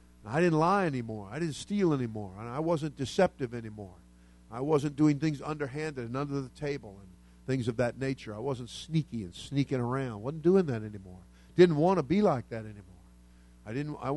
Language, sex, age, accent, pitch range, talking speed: English, male, 50-69, American, 95-145 Hz, 200 wpm